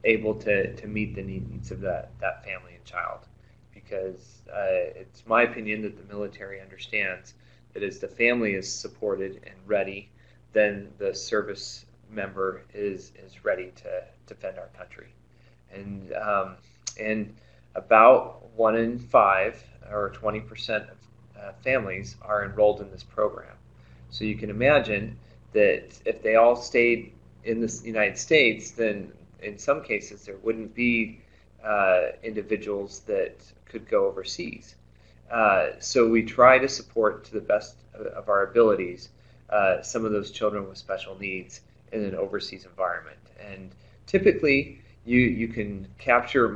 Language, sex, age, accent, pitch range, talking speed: English, male, 30-49, American, 100-125 Hz, 150 wpm